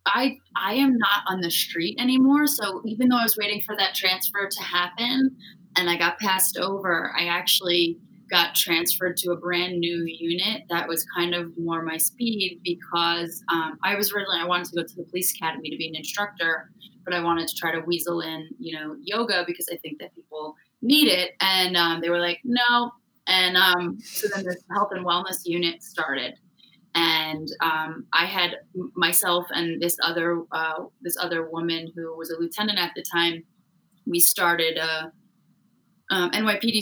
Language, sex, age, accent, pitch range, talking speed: English, female, 20-39, American, 170-210 Hz, 190 wpm